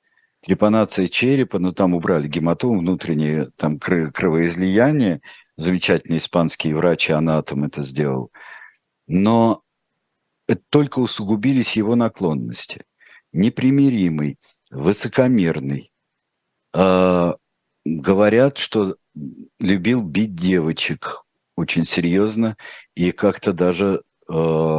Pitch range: 85-120 Hz